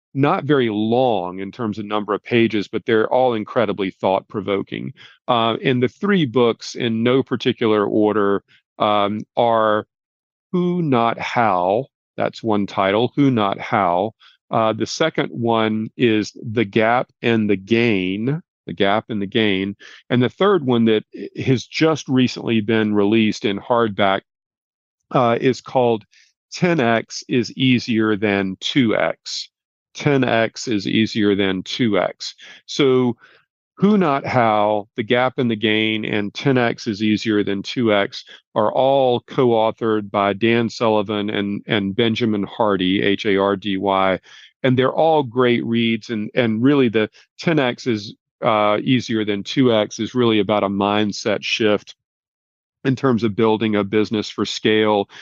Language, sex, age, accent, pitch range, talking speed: English, male, 40-59, American, 105-125 Hz, 140 wpm